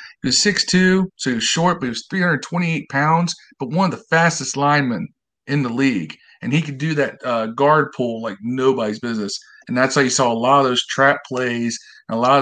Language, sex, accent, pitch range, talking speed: English, male, American, 120-160 Hz, 225 wpm